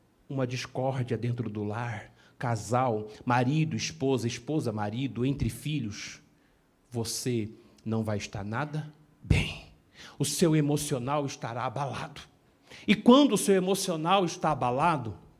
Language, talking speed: Portuguese, 115 wpm